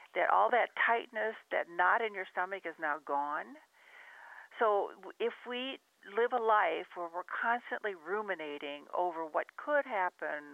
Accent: American